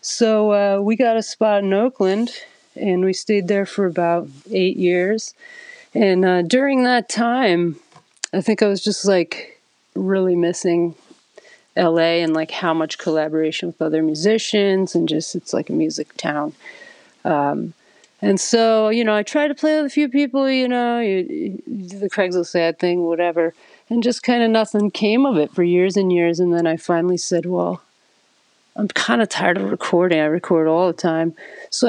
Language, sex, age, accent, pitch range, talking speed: English, female, 40-59, American, 170-215 Hz, 185 wpm